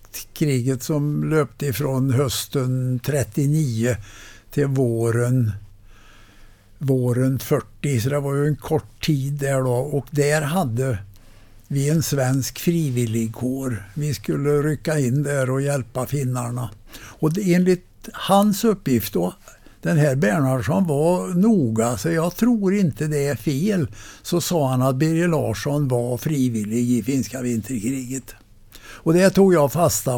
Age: 60-79